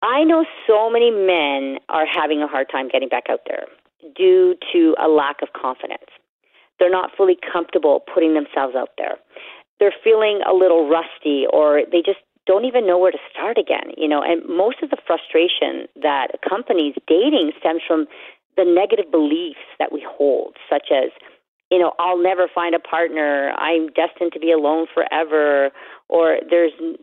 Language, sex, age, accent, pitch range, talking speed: English, female, 40-59, American, 165-265 Hz, 175 wpm